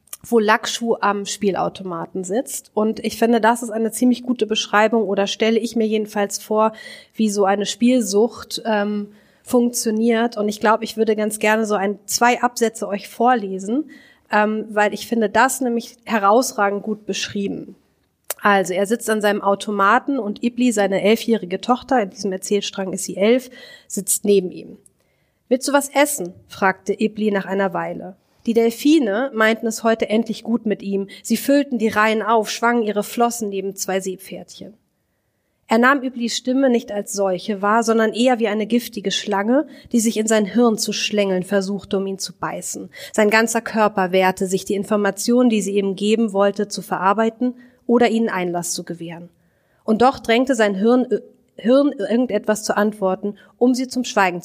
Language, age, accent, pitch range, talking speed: German, 30-49, German, 200-235 Hz, 170 wpm